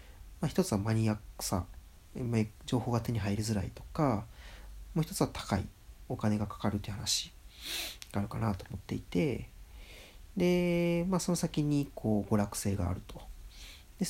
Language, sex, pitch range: Japanese, male, 100-135 Hz